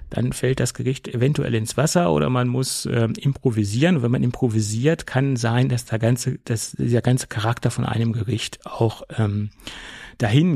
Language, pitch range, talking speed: German, 110-135 Hz, 175 wpm